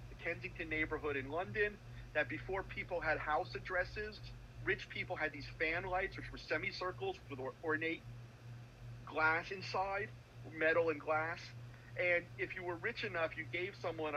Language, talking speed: English, 155 wpm